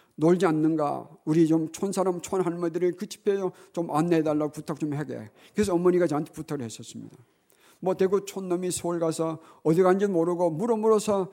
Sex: male